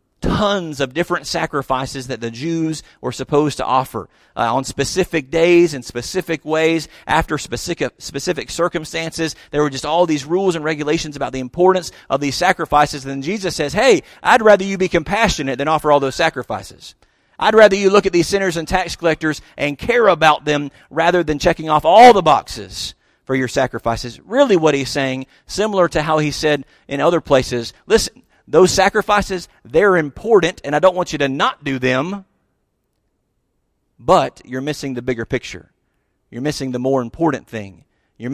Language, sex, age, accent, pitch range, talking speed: English, male, 40-59, American, 130-170 Hz, 180 wpm